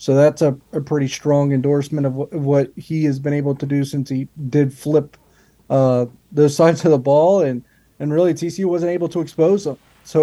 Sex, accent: male, American